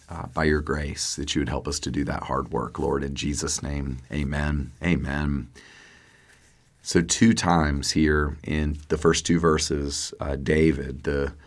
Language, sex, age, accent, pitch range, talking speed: English, male, 40-59, American, 75-85 Hz, 165 wpm